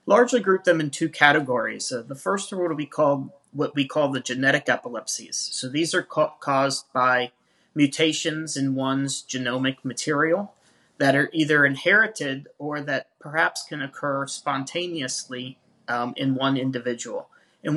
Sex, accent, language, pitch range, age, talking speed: male, American, English, 130-160 Hz, 30-49, 140 wpm